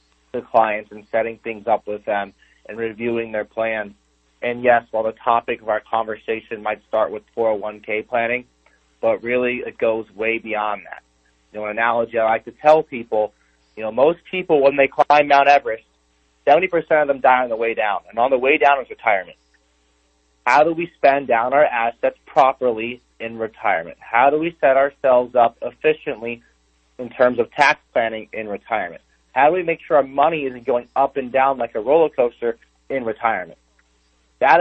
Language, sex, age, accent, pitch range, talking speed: English, male, 30-49, American, 105-125 Hz, 190 wpm